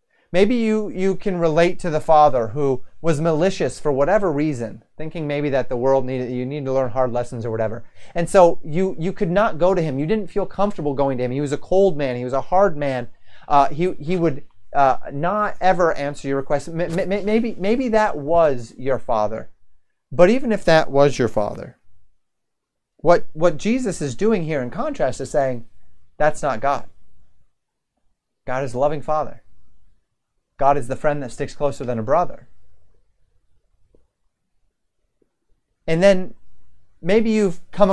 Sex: male